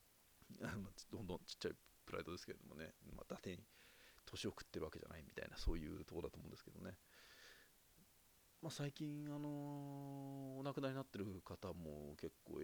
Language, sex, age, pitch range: Japanese, male, 40-59, 85-125 Hz